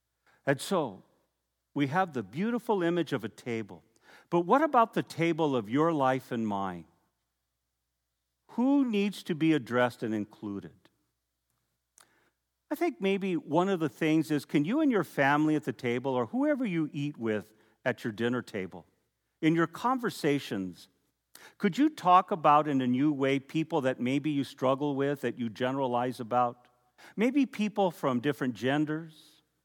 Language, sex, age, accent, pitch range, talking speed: English, male, 50-69, American, 125-170 Hz, 160 wpm